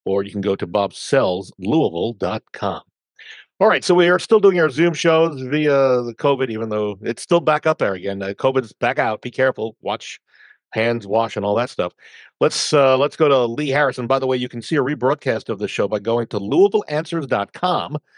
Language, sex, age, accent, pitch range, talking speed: English, male, 50-69, American, 115-160 Hz, 205 wpm